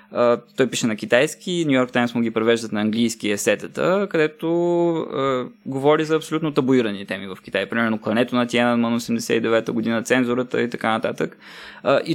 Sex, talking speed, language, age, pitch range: male, 185 wpm, Bulgarian, 20-39, 115-150 Hz